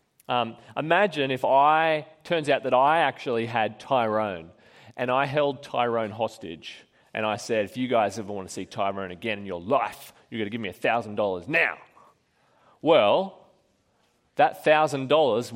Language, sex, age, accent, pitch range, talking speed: English, male, 30-49, Australian, 115-160 Hz, 160 wpm